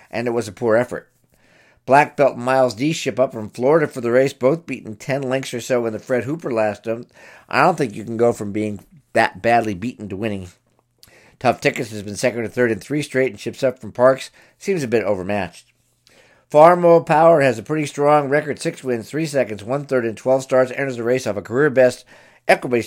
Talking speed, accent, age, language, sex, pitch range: 220 wpm, American, 50-69, English, male, 115-135 Hz